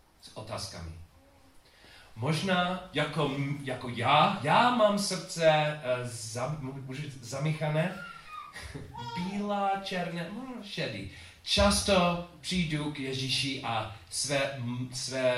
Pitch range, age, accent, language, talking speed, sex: 110-160 Hz, 40-59, native, Czech, 75 wpm, male